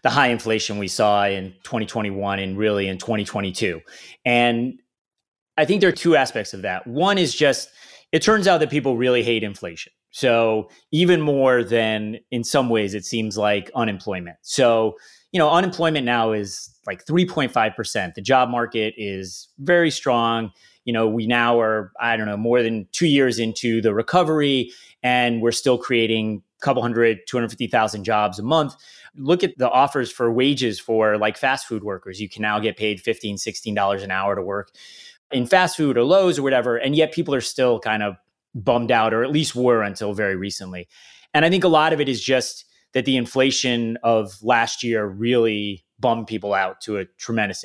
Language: English